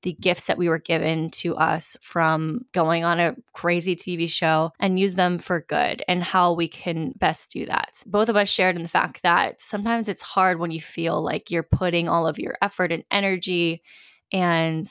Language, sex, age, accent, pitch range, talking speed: English, female, 20-39, American, 170-195 Hz, 205 wpm